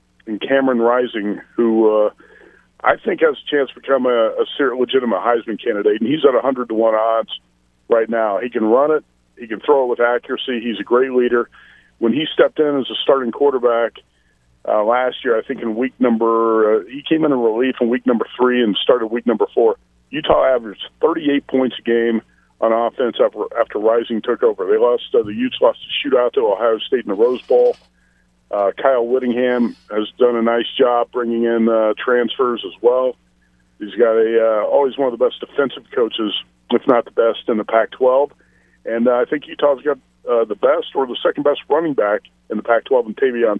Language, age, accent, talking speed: English, 40-59, American, 205 wpm